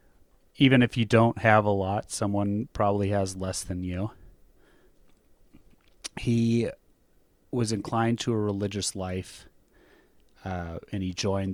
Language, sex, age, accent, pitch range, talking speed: English, male, 30-49, American, 95-115 Hz, 125 wpm